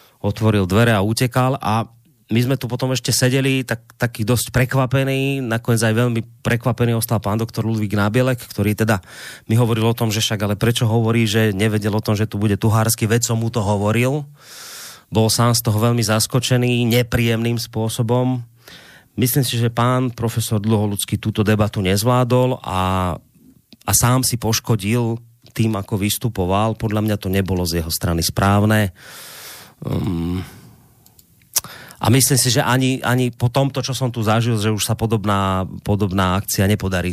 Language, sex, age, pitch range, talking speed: Slovak, male, 30-49, 105-120 Hz, 160 wpm